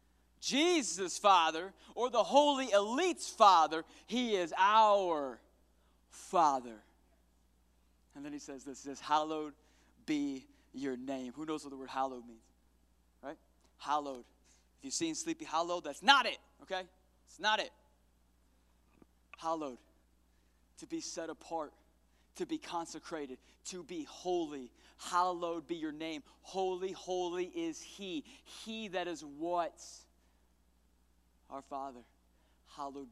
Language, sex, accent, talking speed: English, male, American, 125 wpm